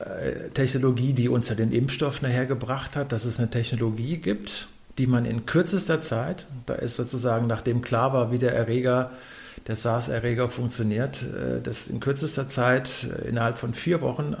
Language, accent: German, German